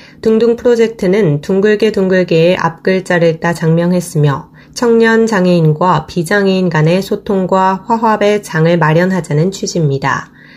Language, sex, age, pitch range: Korean, female, 20-39, 165-200 Hz